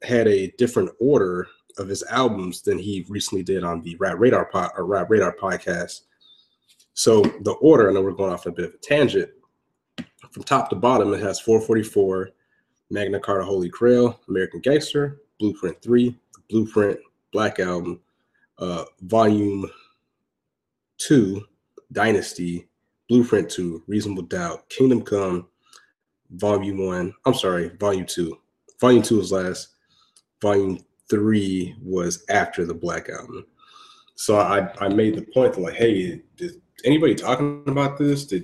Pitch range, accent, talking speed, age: 95-130 Hz, American, 145 wpm, 30-49